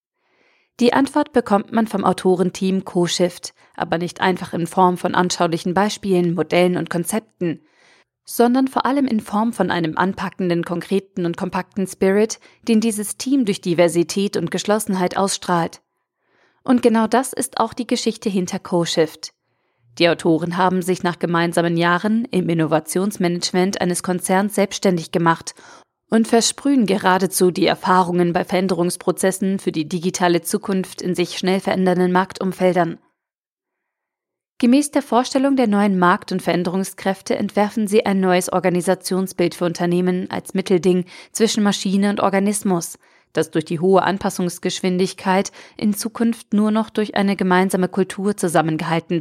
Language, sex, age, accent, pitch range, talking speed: German, female, 40-59, German, 175-205 Hz, 135 wpm